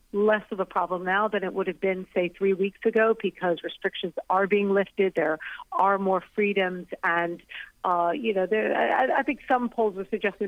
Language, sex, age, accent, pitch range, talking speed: English, female, 40-59, American, 180-215 Hz, 200 wpm